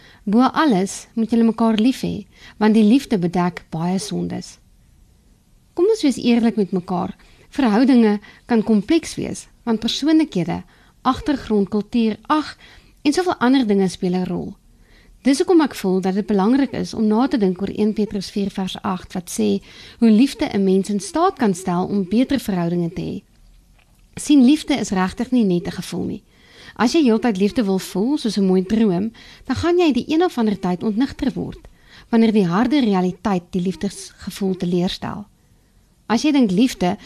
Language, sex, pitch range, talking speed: English, female, 190-255 Hz, 175 wpm